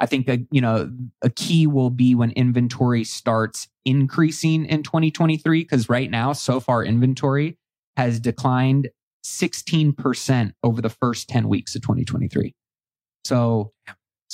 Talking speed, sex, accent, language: 130 wpm, male, American, English